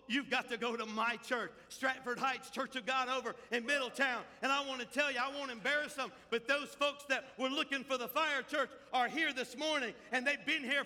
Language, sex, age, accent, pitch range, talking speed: English, male, 50-69, American, 235-290 Hz, 240 wpm